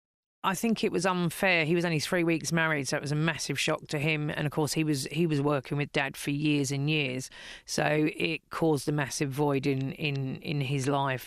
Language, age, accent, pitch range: English, 40-59, British, 140-165 Hz